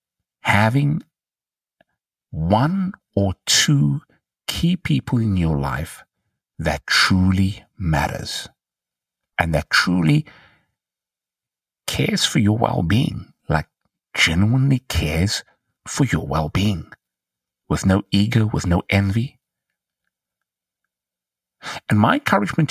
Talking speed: 95 wpm